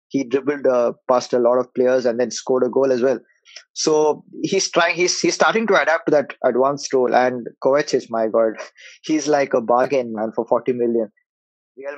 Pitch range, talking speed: 125-155 Hz, 200 wpm